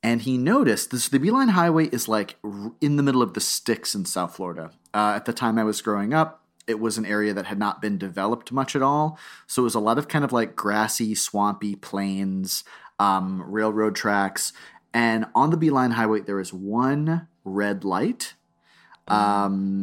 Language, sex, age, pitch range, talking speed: English, male, 30-49, 100-140 Hz, 195 wpm